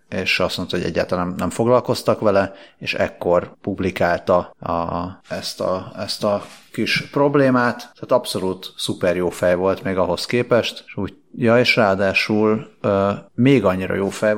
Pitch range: 95-110 Hz